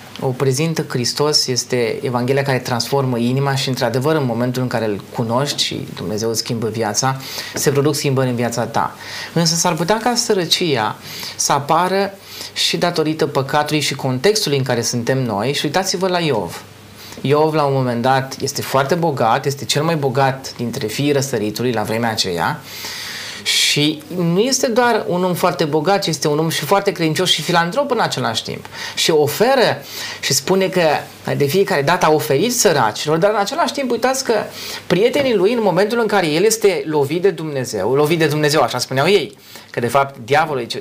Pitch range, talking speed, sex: 125-180 Hz, 180 wpm, male